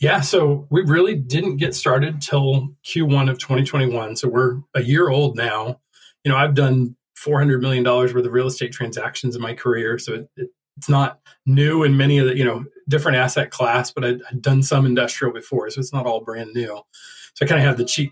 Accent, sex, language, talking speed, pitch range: American, male, English, 220 wpm, 125-145 Hz